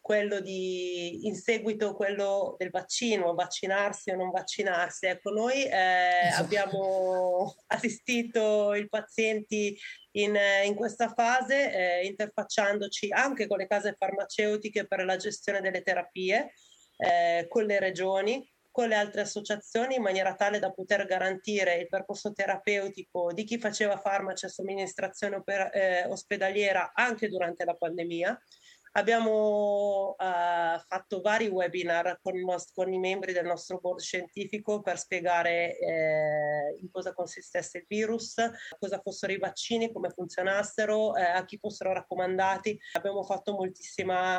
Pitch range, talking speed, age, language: 180-205 Hz, 130 wpm, 30-49, Italian